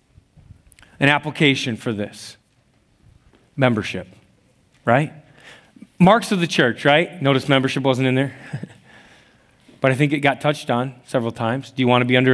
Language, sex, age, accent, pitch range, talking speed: English, male, 30-49, American, 135-170 Hz, 150 wpm